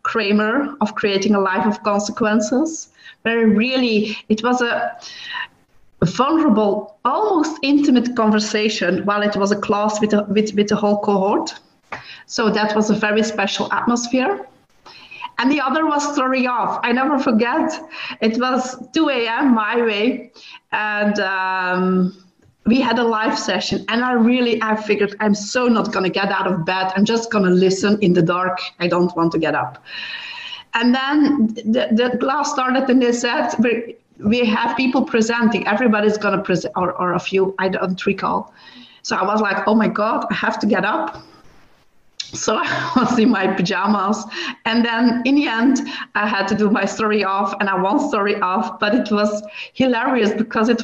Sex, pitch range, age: female, 205-245 Hz, 30-49